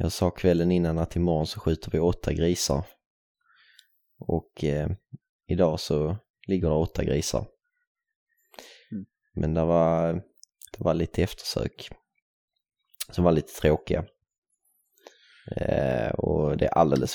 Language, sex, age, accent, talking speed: Swedish, male, 20-39, native, 110 wpm